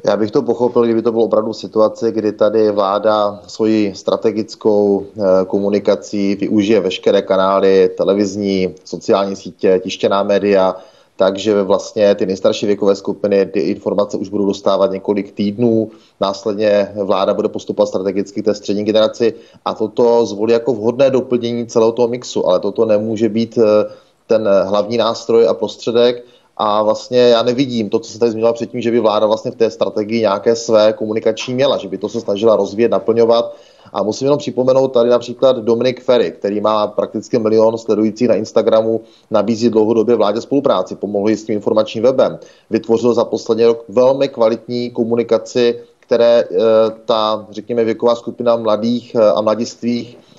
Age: 30-49